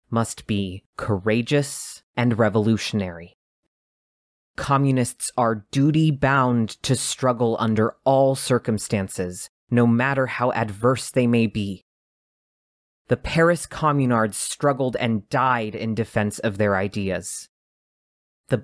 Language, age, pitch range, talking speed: English, 30-49, 105-130 Hz, 105 wpm